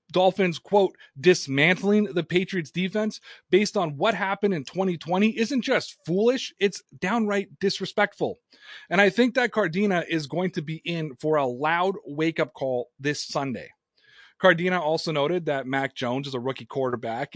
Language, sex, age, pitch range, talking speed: English, male, 30-49, 150-200 Hz, 155 wpm